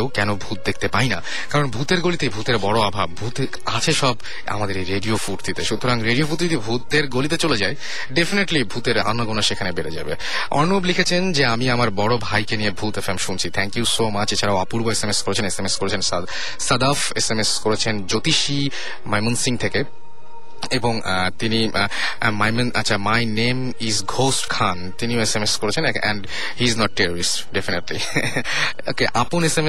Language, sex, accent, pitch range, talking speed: Bengali, male, native, 105-130 Hz, 70 wpm